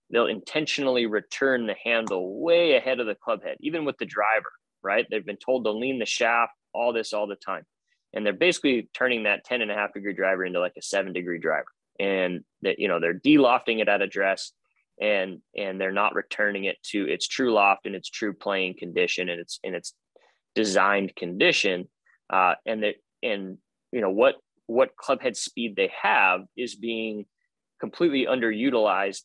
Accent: American